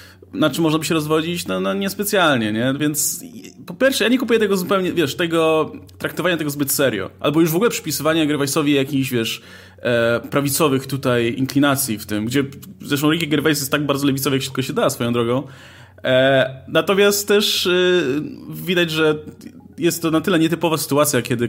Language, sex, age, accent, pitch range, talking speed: Polish, male, 20-39, native, 120-165 Hz, 185 wpm